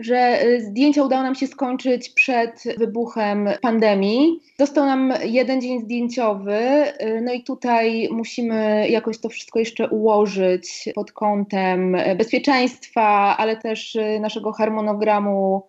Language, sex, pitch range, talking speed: Polish, female, 210-260 Hz, 115 wpm